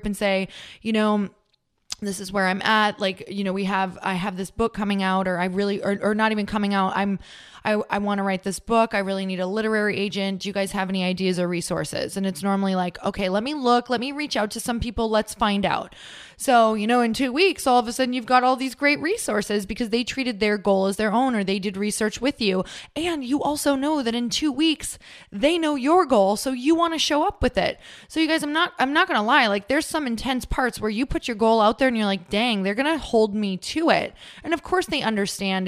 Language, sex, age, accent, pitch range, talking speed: English, female, 20-39, American, 195-240 Hz, 260 wpm